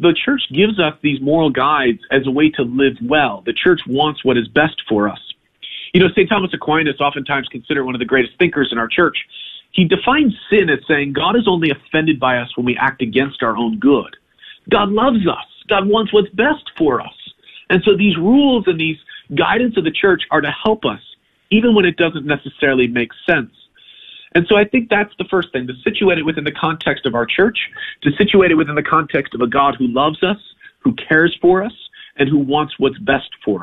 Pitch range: 145-210 Hz